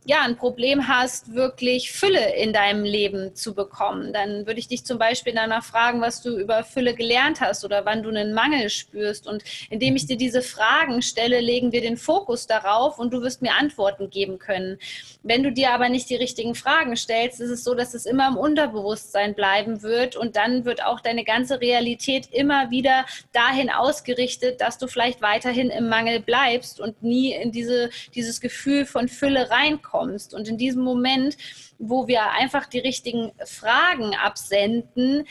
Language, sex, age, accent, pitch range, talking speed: German, female, 20-39, German, 225-255 Hz, 185 wpm